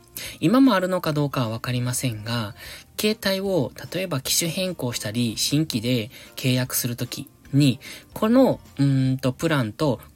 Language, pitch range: Japanese, 120-165 Hz